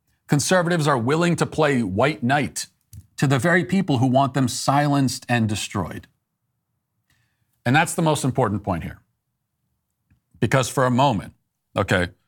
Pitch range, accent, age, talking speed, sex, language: 110-150 Hz, American, 40-59, 140 wpm, male, English